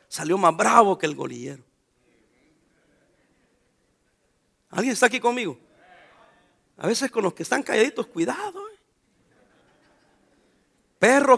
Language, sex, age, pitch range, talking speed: English, male, 50-69, 200-325 Hz, 105 wpm